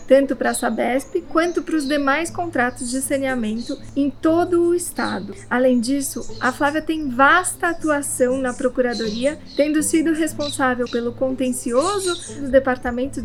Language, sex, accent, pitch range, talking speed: Portuguese, female, Brazilian, 250-295 Hz, 140 wpm